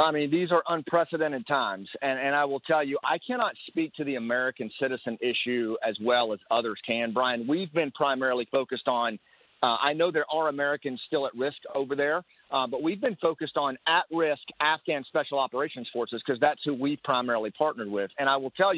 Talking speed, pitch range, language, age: 205 wpm, 130-165 Hz, English, 40-59